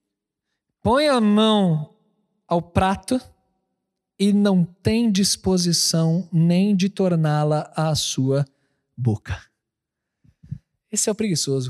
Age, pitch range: 20-39, 155-220 Hz